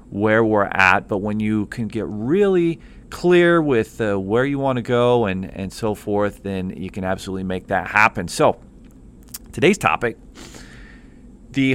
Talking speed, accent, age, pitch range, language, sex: 165 wpm, American, 40-59, 110-140 Hz, English, male